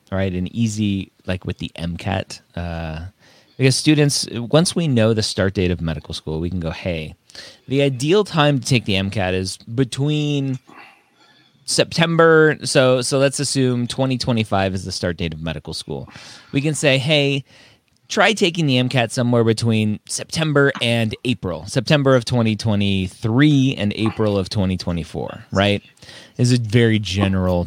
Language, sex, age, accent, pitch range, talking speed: English, male, 30-49, American, 90-130 Hz, 155 wpm